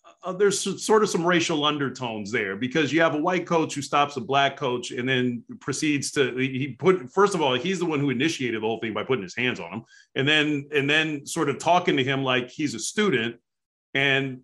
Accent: American